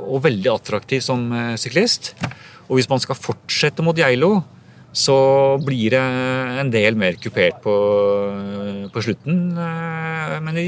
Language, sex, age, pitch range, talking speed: English, male, 40-59, 90-130 Hz, 130 wpm